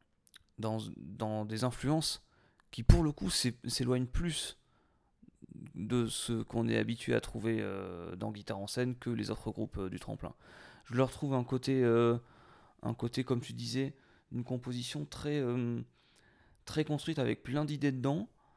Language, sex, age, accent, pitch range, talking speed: French, male, 30-49, French, 110-130 Hz, 165 wpm